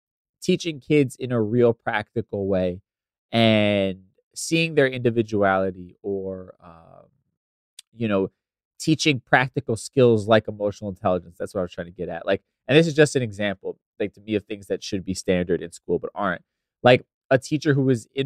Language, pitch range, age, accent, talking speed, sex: English, 100-125 Hz, 20-39, American, 180 wpm, male